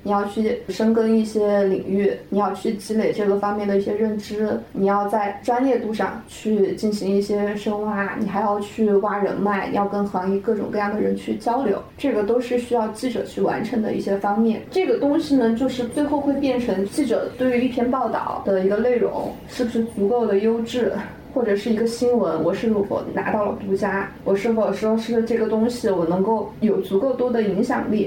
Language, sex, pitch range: Chinese, female, 205-250 Hz